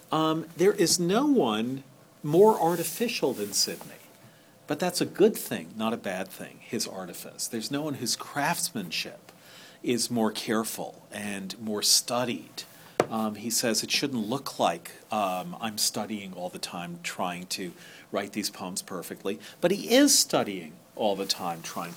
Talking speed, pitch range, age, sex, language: 160 wpm, 110-155 Hz, 40-59, male, English